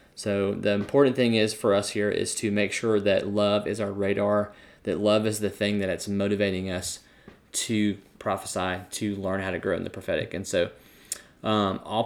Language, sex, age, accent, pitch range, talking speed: English, male, 20-39, American, 100-110 Hz, 200 wpm